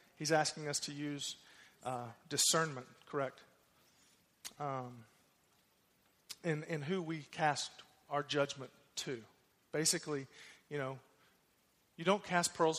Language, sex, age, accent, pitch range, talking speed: English, male, 40-59, American, 140-165 Hz, 115 wpm